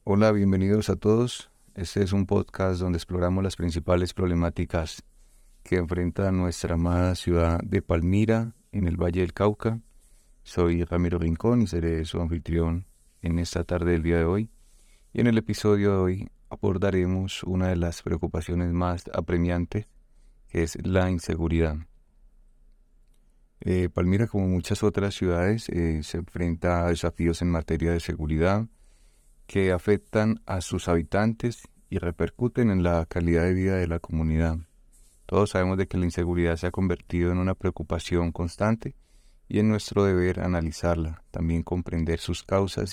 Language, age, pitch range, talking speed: Spanish, 30-49, 85-100 Hz, 150 wpm